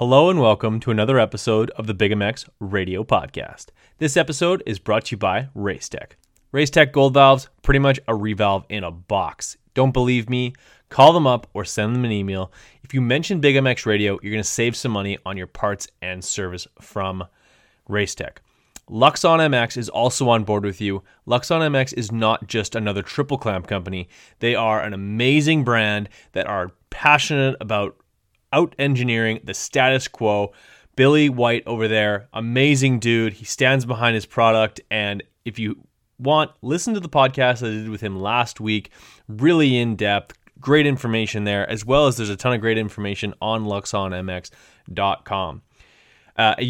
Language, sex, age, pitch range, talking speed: English, male, 30-49, 105-135 Hz, 170 wpm